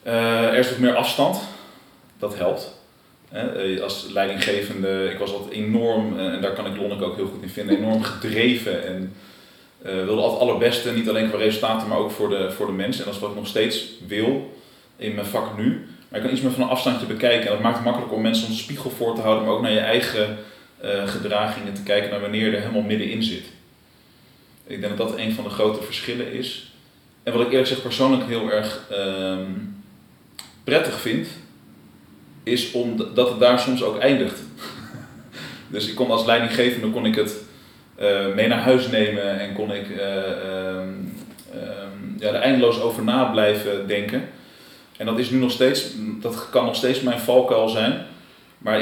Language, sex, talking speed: Dutch, male, 195 wpm